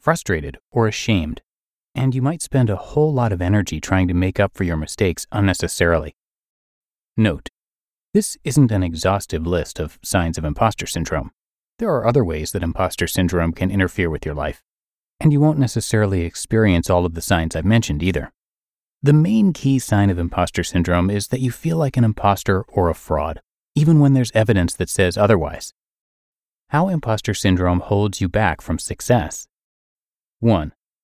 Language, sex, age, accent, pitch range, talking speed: English, male, 30-49, American, 90-130 Hz, 170 wpm